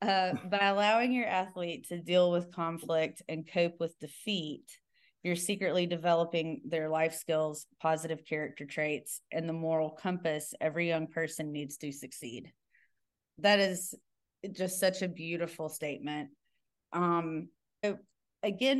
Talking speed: 130 wpm